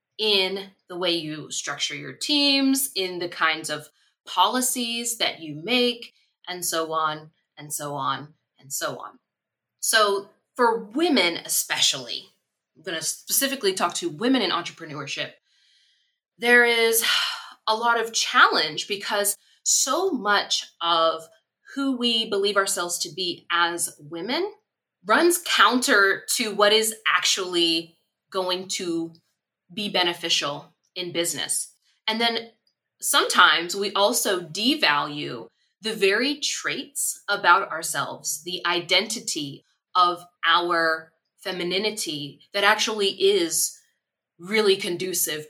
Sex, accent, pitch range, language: female, American, 170-240 Hz, English